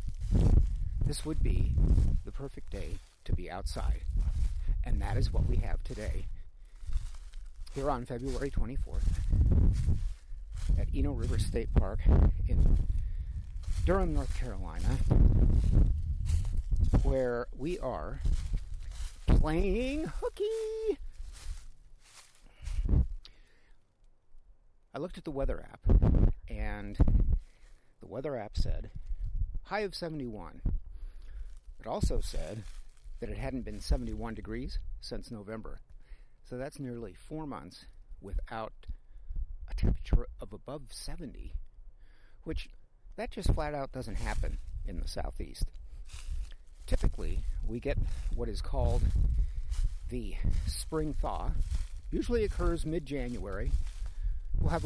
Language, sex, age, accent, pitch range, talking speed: English, male, 50-69, American, 75-115 Hz, 100 wpm